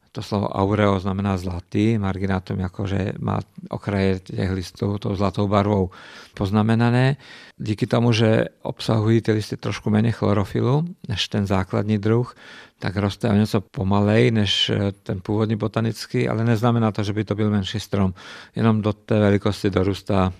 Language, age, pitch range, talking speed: Czech, 50-69, 100-110 Hz, 150 wpm